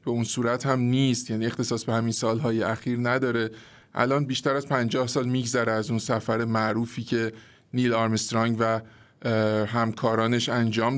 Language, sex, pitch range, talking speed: Persian, male, 115-130 Hz, 155 wpm